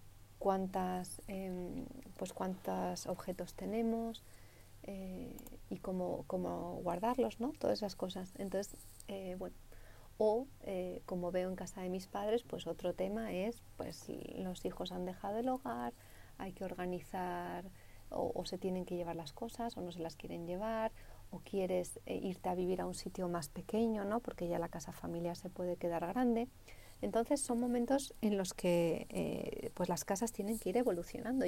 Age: 40-59